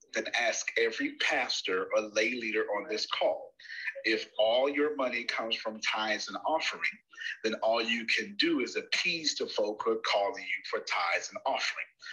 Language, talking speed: English, 180 wpm